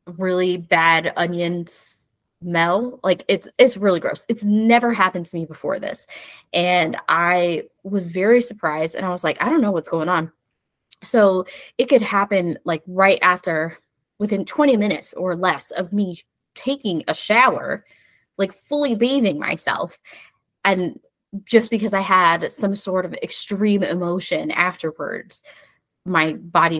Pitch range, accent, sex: 170-225 Hz, American, female